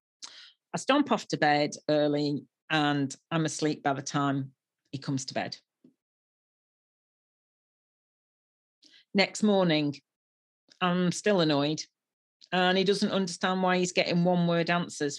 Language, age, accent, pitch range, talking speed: English, 40-59, British, 145-180 Hz, 125 wpm